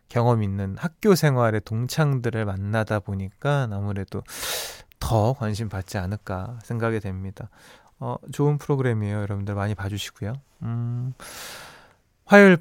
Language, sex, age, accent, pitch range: Korean, male, 20-39, native, 105-155 Hz